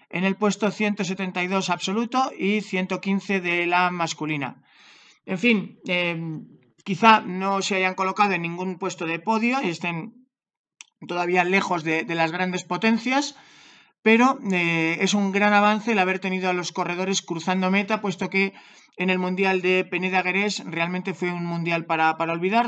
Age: 40-59